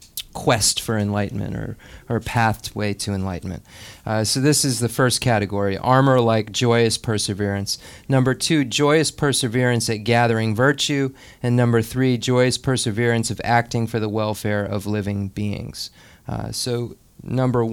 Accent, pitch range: American, 110-130 Hz